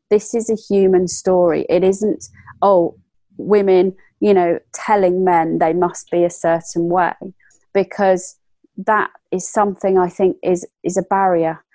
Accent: British